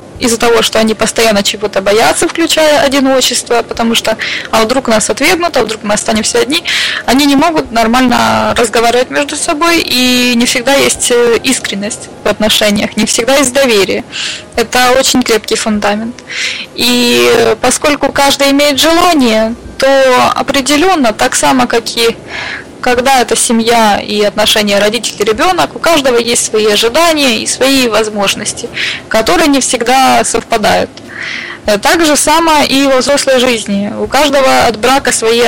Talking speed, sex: 140 wpm, female